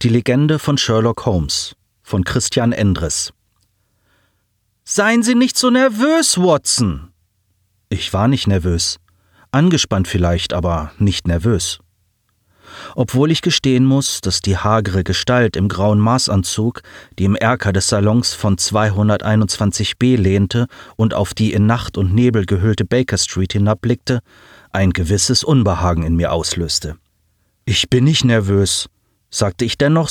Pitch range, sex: 95-140 Hz, male